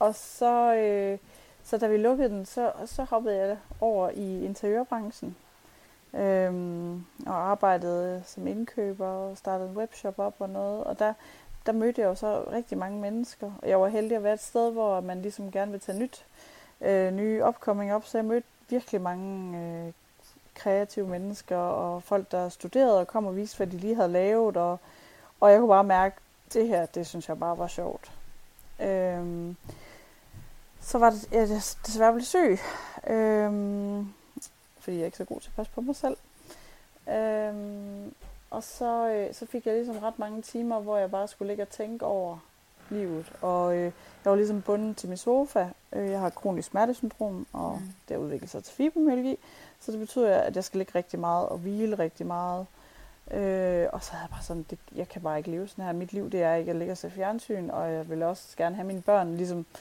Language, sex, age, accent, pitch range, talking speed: Danish, female, 30-49, native, 180-225 Hz, 200 wpm